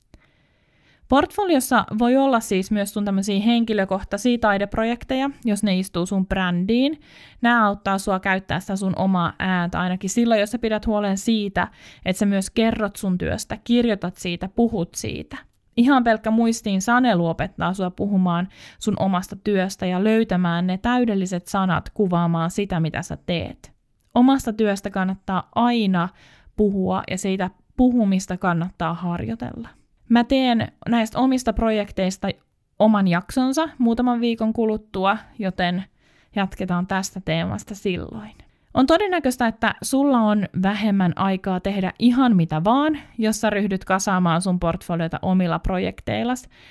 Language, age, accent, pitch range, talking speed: Finnish, 20-39, native, 185-230 Hz, 130 wpm